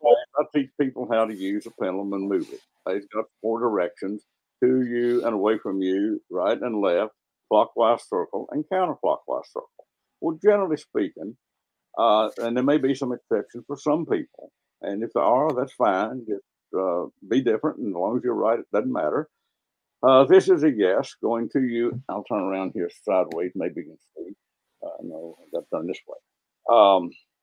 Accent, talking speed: American, 190 wpm